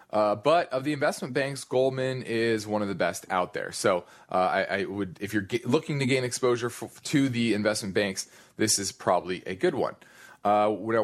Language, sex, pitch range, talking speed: English, male, 105-135 Hz, 205 wpm